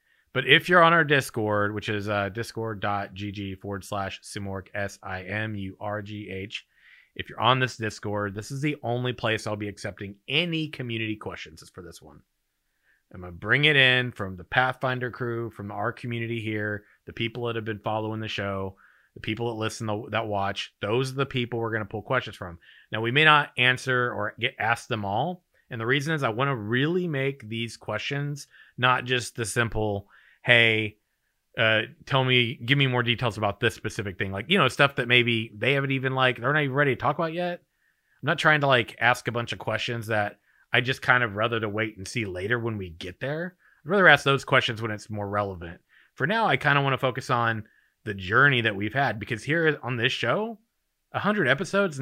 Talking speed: 210 wpm